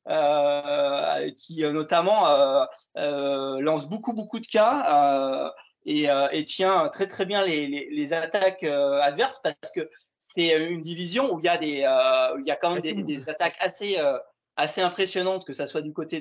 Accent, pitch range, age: French, 150-200 Hz, 20-39